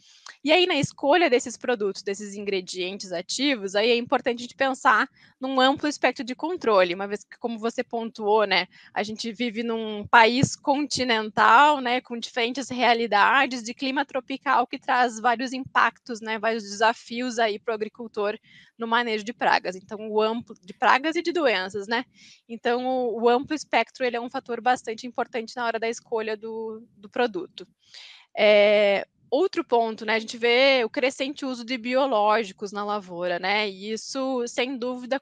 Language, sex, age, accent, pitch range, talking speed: Portuguese, female, 20-39, Brazilian, 215-265 Hz, 170 wpm